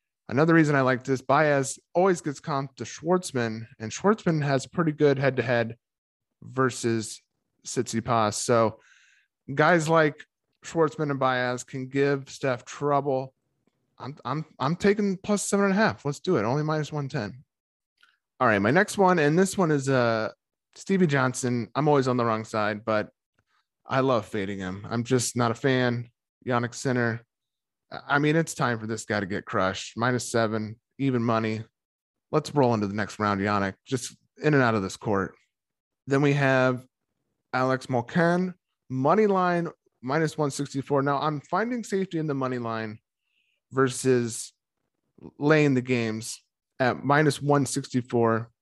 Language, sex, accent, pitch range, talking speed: English, male, American, 120-150 Hz, 155 wpm